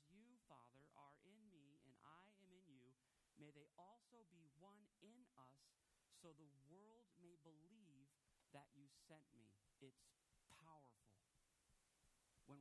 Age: 40-59